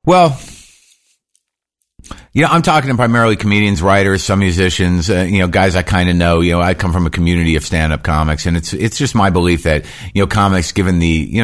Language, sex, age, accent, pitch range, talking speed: English, male, 50-69, American, 75-95 Hz, 220 wpm